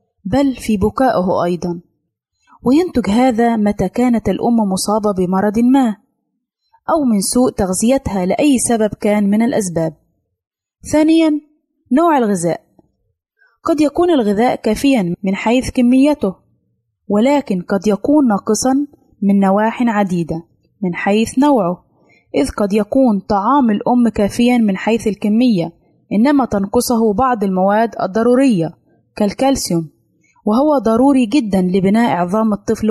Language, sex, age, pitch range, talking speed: Arabic, female, 20-39, 195-255 Hz, 115 wpm